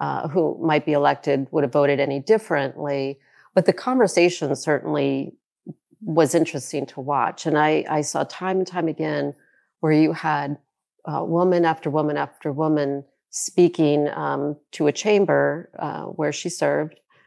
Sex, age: female, 40-59